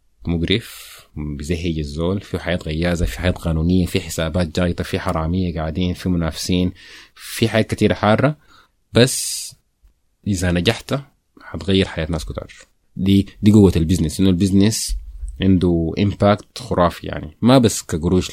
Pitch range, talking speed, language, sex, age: 80-100 Hz, 135 wpm, Arabic, male, 30-49